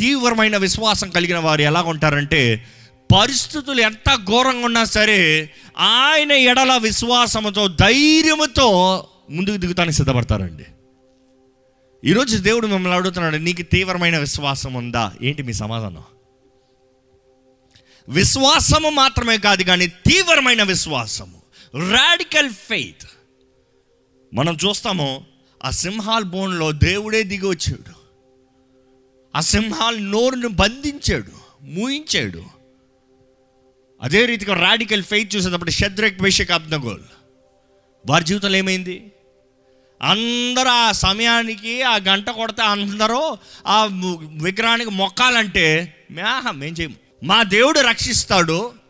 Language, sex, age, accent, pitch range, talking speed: Telugu, male, 30-49, native, 130-220 Hz, 95 wpm